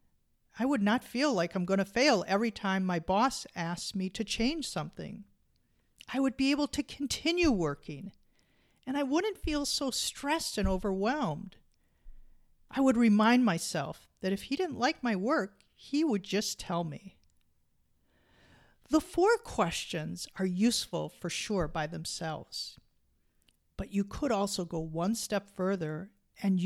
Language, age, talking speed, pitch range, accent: English, 50-69, 150 wpm, 165-240 Hz, American